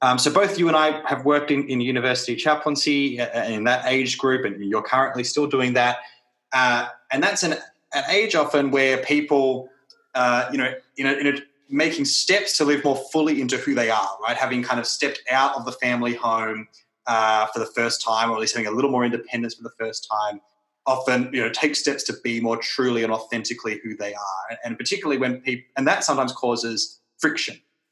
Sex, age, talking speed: male, 20-39, 215 wpm